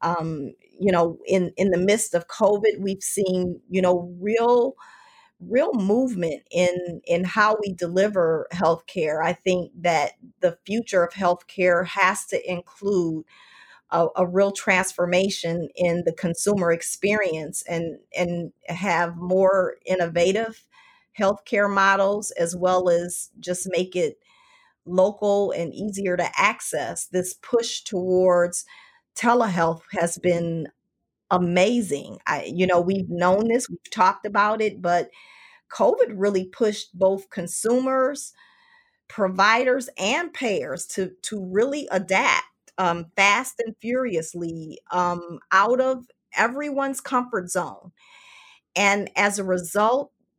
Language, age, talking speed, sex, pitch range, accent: English, 40-59, 120 wpm, female, 175-230 Hz, American